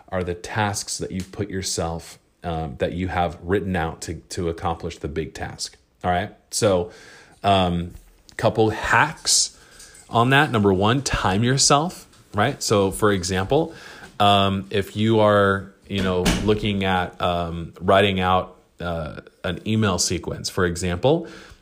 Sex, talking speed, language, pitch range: male, 145 wpm, English, 90-110 Hz